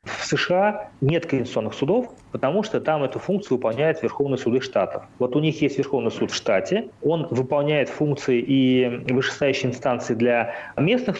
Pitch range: 125-160 Hz